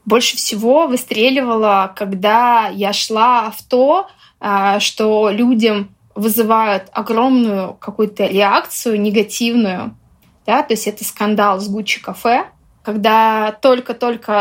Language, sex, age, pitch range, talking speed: Russian, female, 20-39, 210-255 Hz, 95 wpm